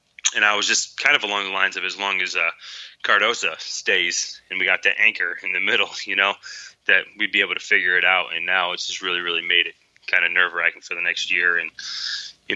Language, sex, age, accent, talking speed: English, male, 20-39, American, 250 wpm